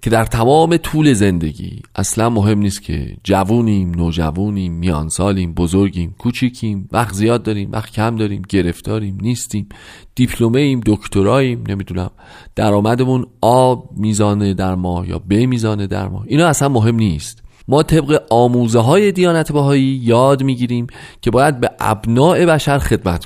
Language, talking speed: Persian, 140 wpm